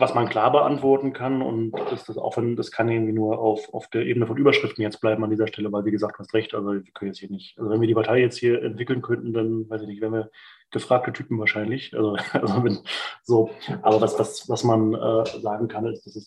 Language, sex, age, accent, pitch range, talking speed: German, male, 20-39, German, 110-120 Hz, 260 wpm